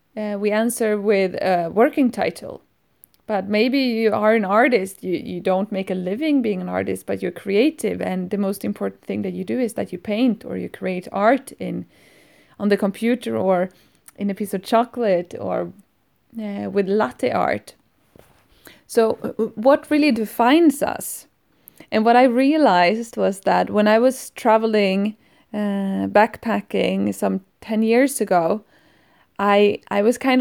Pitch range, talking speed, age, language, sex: 195-230 Hz, 160 wpm, 20-39, English, female